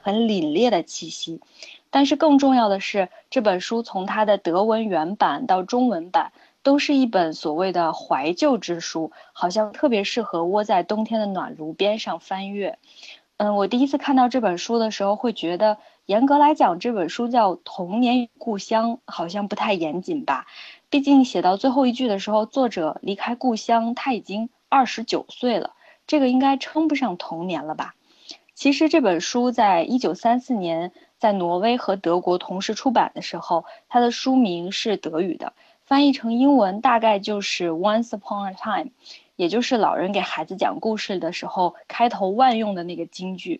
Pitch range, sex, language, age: 185-270 Hz, female, Chinese, 20-39